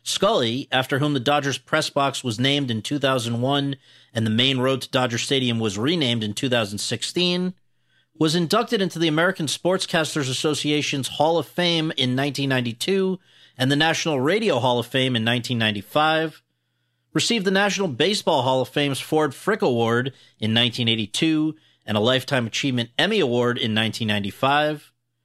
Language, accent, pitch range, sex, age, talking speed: English, American, 120-165 Hz, male, 40-59, 150 wpm